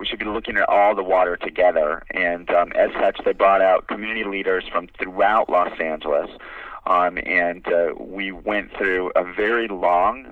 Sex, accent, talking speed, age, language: male, American, 180 wpm, 40-59, English